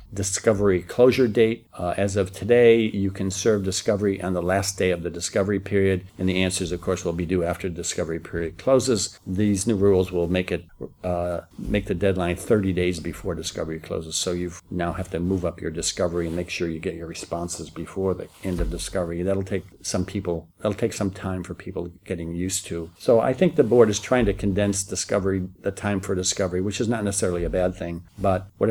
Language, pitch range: English, 85-100 Hz